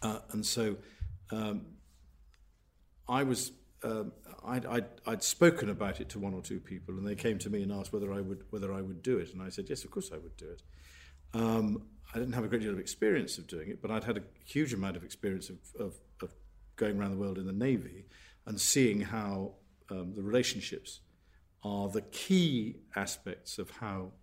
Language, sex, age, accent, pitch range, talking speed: English, male, 50-69, British, 90-115 Hz, 210 wpm